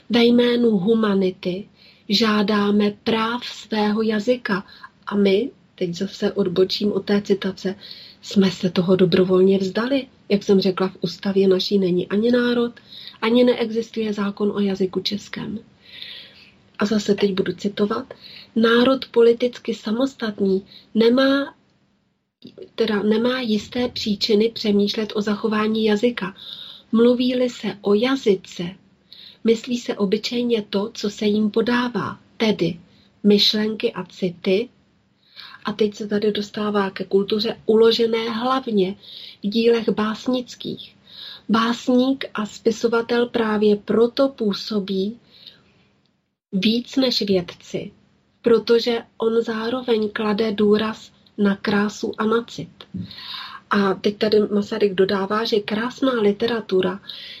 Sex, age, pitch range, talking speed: female, 30-49, 200-230 Hz, 110 wpm